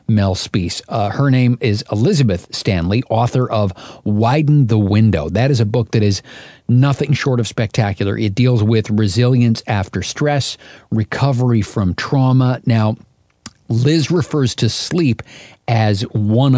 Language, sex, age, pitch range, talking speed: English, male, 50-69, 105-125 Hz, 140 wpm